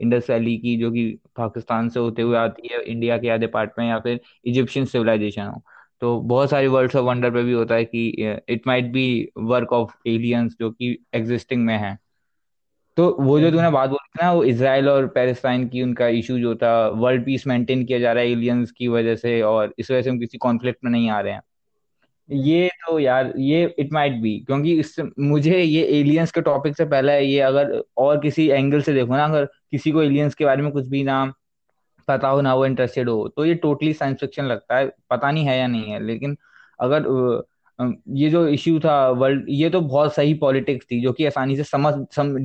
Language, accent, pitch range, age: English, Indian, 120-140 Hz, 20-39